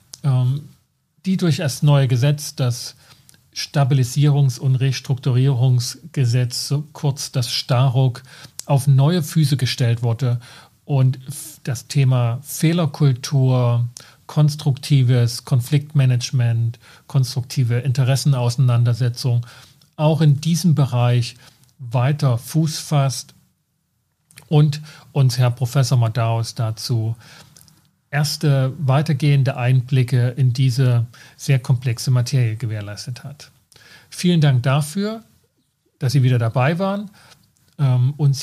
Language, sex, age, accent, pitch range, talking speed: German, male, 40-59, German, 125-150 Hz, 90 wpm